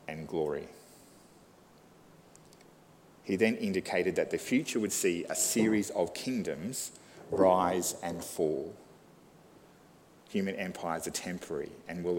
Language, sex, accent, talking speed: English, male, Australian, 110 wpm